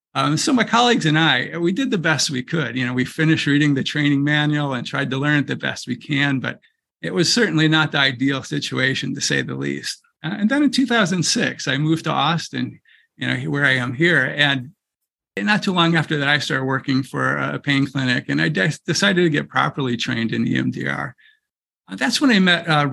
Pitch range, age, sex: 135-165 Hz, 50-69, male